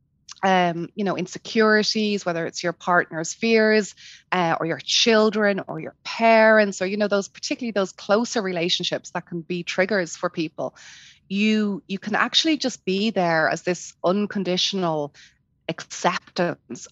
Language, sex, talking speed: English, female, 145 wpm